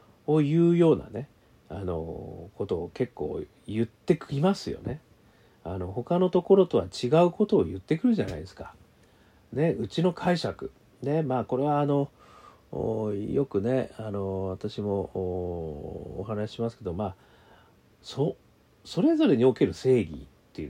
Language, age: Japanese, 40-59